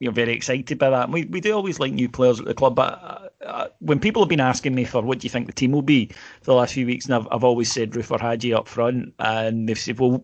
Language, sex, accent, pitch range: English, male, British, 115-150 Hz